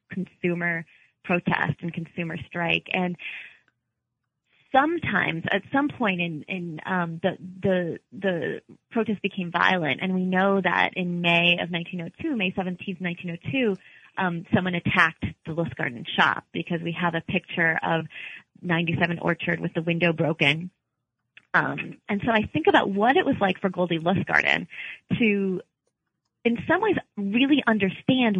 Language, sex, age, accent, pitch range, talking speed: English, female, 20-39, American, 170-205 Hz, 140 wpm